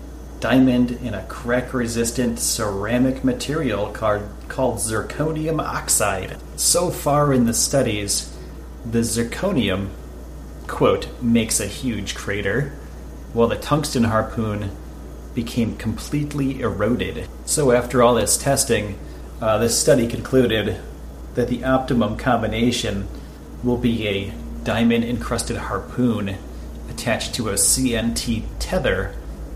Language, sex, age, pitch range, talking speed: English, male, 30-49, 75-125 Hz, 110 wpm